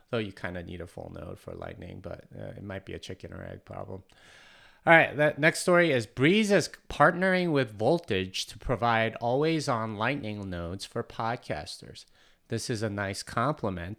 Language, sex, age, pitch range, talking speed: English, male, 30-49, 100-130 Hz, 190 wpm